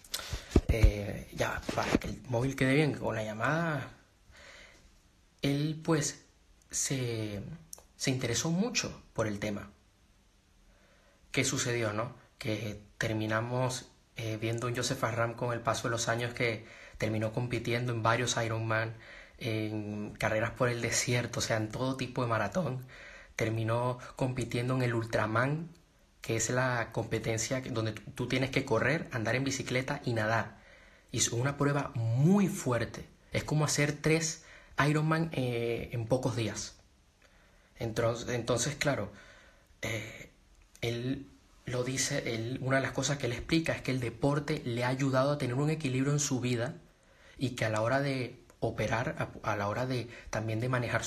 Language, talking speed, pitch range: Spanish, 155 wpm, 110-135 Hz